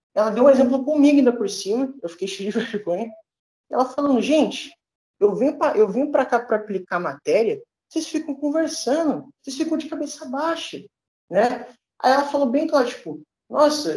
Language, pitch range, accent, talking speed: Portuguese, 225-300 Hz, Brazilian, 180 wpm